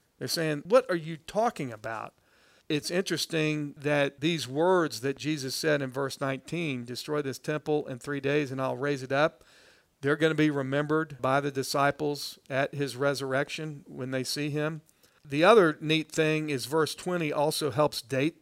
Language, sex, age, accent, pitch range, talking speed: English, male, 50-69, American, 135-160 Hz, 175 wpm